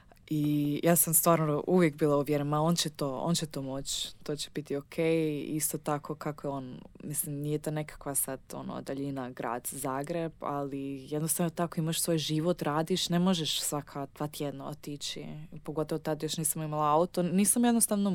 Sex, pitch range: female, 140-160 Hz